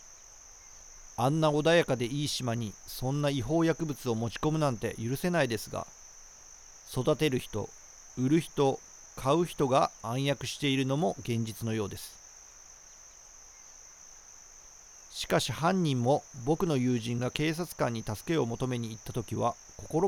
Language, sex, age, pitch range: Japanese, male, 40-59, 110-145 Hz